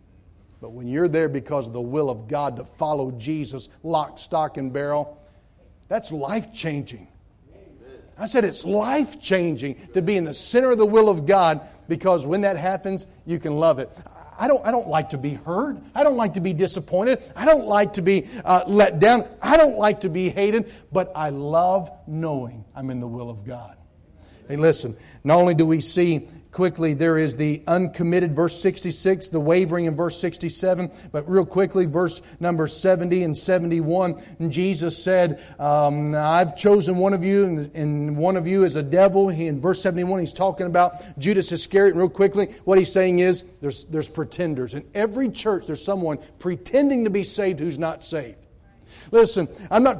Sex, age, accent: male, 50-69, American